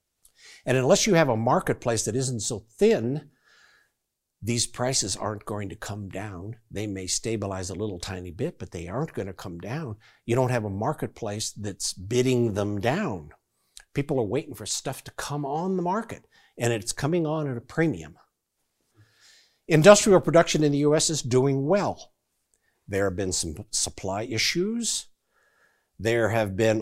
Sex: male